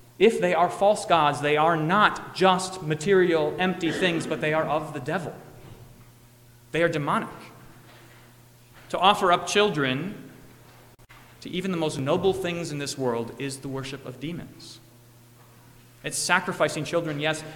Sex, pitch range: male, 120-160 Hz